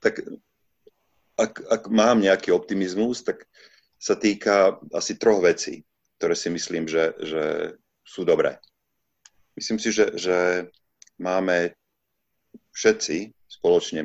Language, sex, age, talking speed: Slovak, male, 40-59, 110 wpm